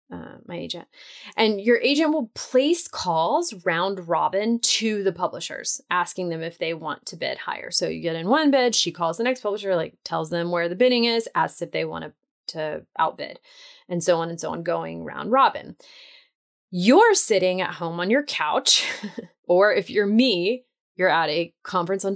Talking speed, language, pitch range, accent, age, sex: 195 wpm, English, 175-240 Hz, American, 20-39, female